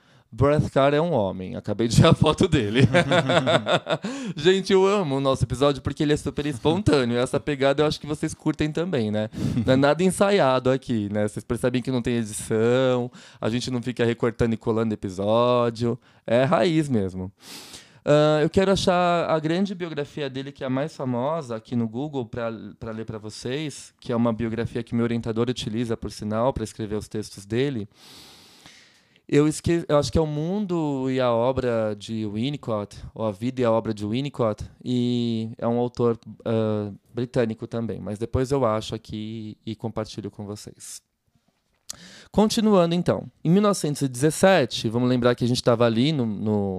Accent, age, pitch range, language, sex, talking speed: Brazilian, 20-39, 115-155 Hz, Portuguese, male, 175 wpm